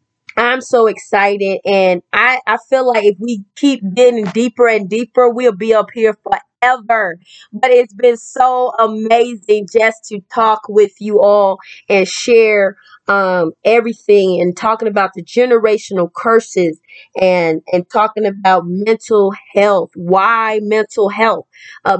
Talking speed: 140 wpm